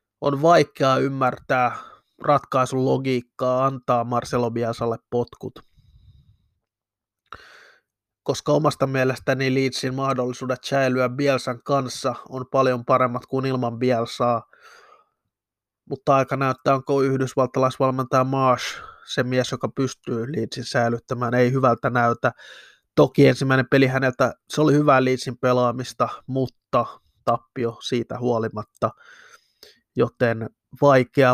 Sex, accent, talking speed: male, native, 100 wpm